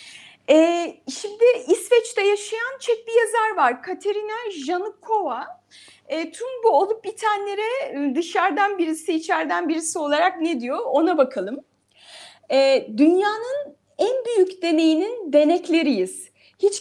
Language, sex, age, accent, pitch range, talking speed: Turkish, female, 30-49, native, 295-400 Hz, 100 wpm